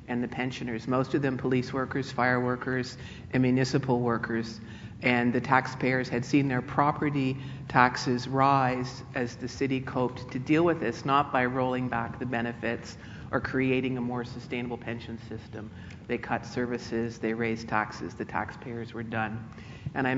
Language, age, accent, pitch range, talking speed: English, 50-69, American, 115-130 Hz, 165 wpm